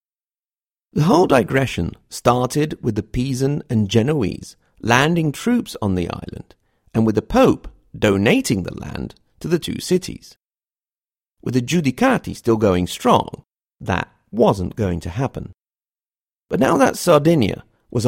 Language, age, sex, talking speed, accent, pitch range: English, 40-59, male, 135 wpm, British, 95-140 Hz